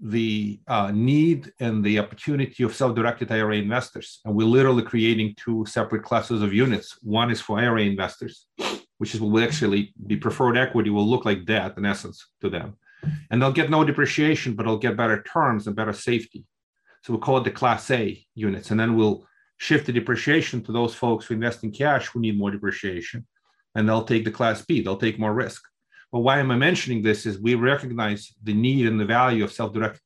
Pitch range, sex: 110-130 Hz, male